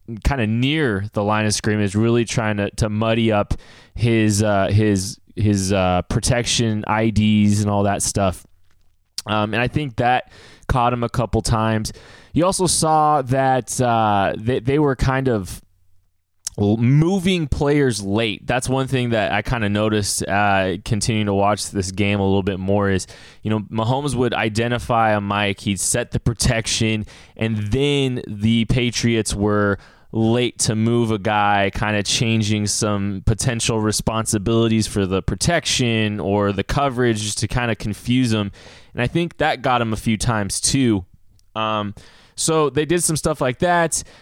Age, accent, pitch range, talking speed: 20-39, American, 105-125 Hz, 165 wpm